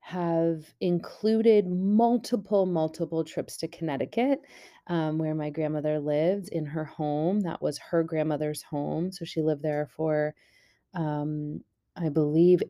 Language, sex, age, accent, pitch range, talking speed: English, female, 30-49, American, 150-175 Hz, 130 wpm